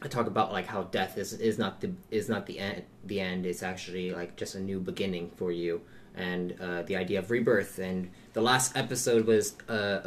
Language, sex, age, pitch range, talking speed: English, male, 20-39, 95-115 Hz, 220 wpm